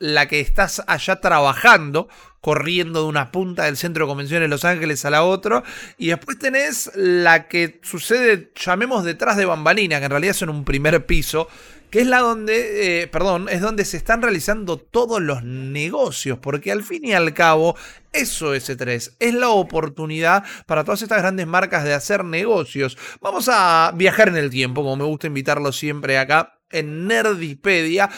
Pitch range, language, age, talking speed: 150-215 Hz, Spanish, 30-49, 180 wpm